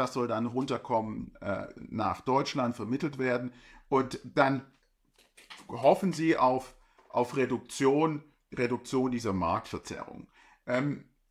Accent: German